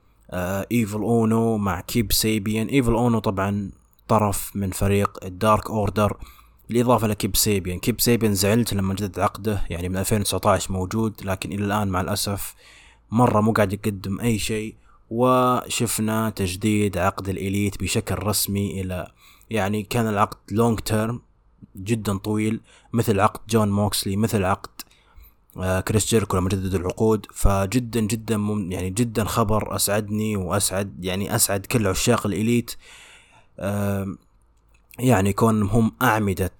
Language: English